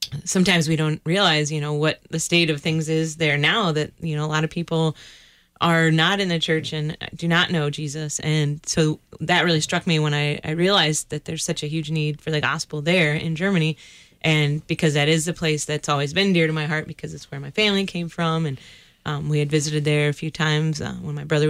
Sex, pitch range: female, 150-175 Hz